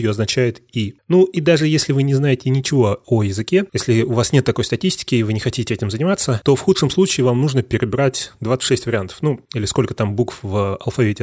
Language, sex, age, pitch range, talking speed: Russian, male, 20-39, 110-140 Hz, 215 wpm